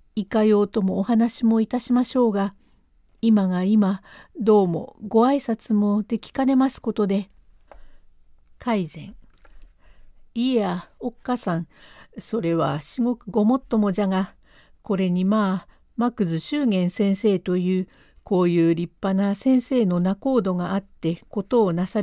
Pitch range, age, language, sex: 175-230 Hz, 50-69, Japanese, female